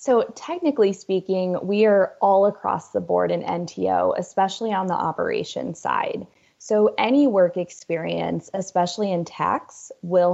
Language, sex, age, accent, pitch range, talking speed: English, female, 20-39, American, 170-210 Hz, 140 wpm